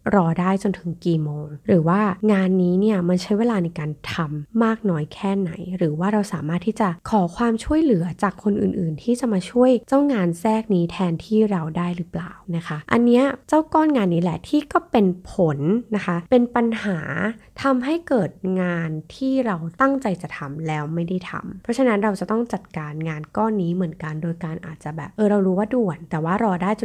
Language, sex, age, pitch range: Thai, female, 20-39, 165-215 Hz